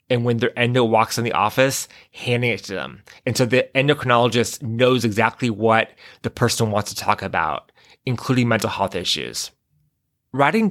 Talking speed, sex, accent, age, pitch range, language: 170 wpm, male, American, 20-39, 110-130 Hz, English